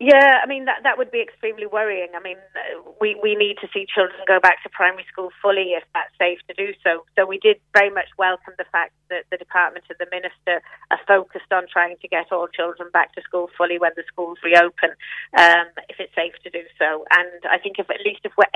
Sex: female